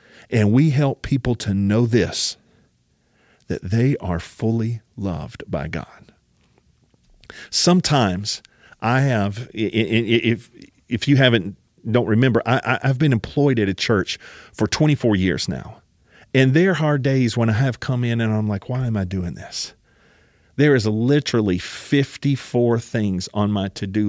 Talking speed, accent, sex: 140 wpm, American, male